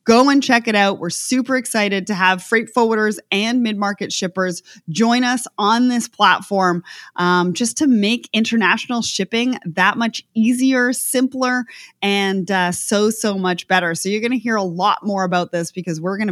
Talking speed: 180 wpm